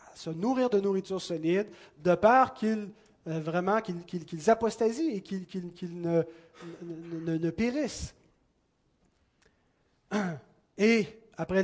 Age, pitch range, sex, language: 30-49, 165-205 Hz, male, French